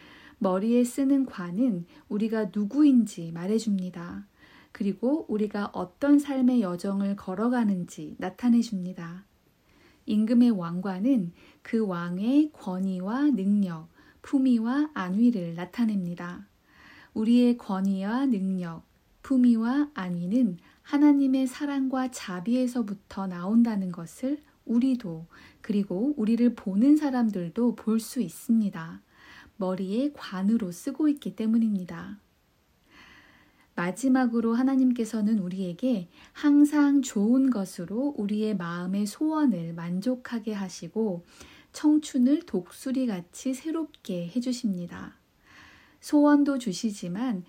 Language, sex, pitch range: Korean, female, 190-260 Hz